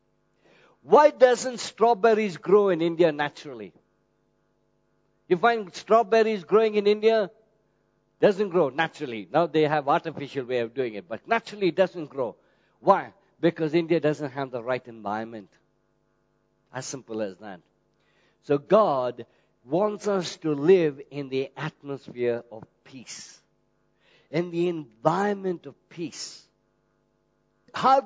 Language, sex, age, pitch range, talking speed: English, male, 50-69, 150-230 Hz, 125 wpm